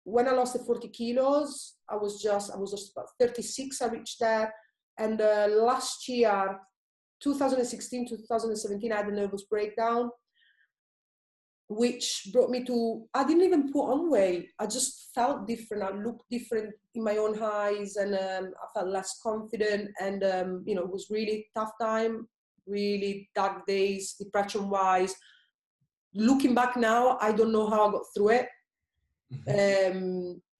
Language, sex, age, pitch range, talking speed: English, female, 30-49, 195-225 Hz, 155 wpm